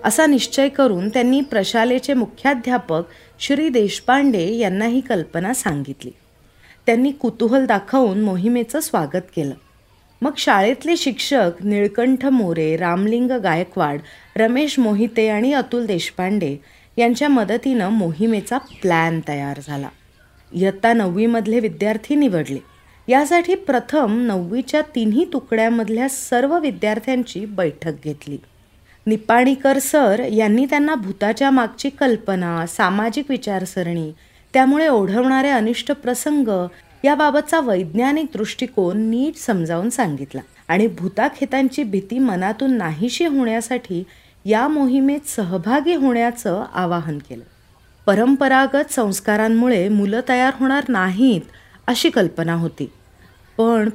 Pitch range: 185-265 Hz